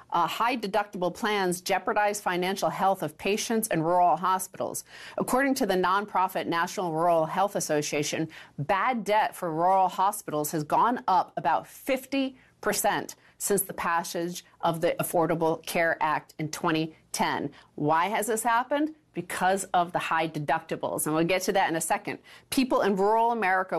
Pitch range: 160-200 Hz